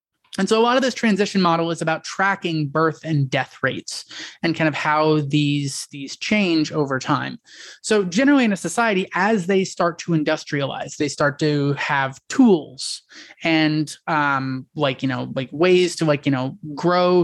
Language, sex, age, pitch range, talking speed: English, male, 20-39, 150-195 Hz, 180 wpm